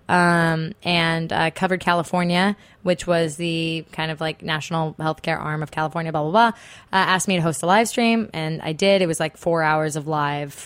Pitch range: 160-195 Hz